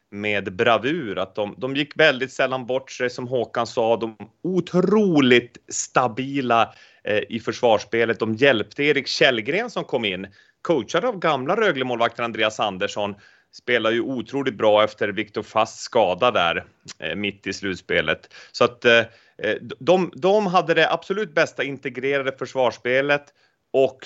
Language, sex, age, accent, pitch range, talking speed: English, male, 30-49, Swedish, 110-160 Hz, 140 wpm